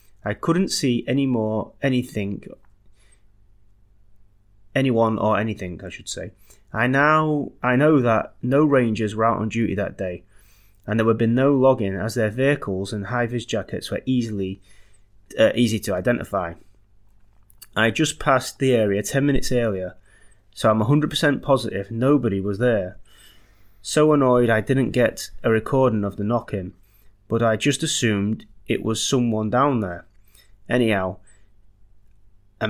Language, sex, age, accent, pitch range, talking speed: English, male, 30-49, British, 100-125 Hz, 145 wpm